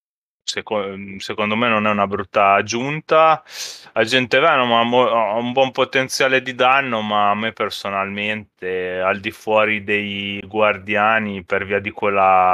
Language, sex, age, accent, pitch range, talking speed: Italian, male, 20-39, native, 95-110 Hz, 145 wpm